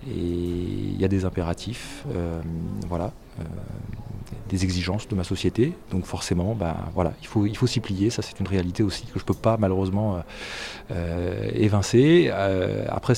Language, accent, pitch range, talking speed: French, French, 95-120 Hz, 175 wpm